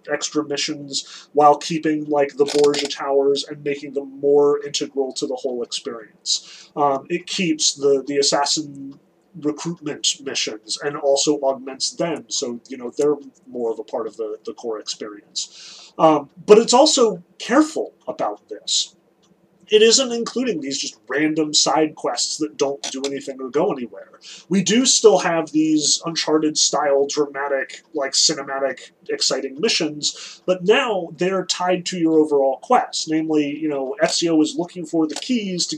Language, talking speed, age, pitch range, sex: English, 160 wpm, 30-49, 140-180 Hz, male